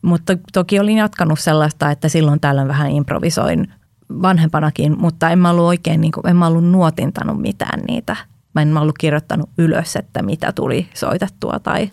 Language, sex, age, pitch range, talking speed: Finnish, female, 20-39, 155-190 Hz, 175 wpm